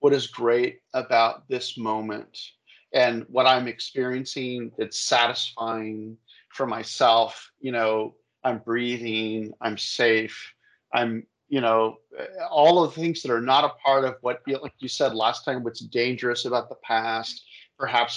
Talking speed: 150 wpm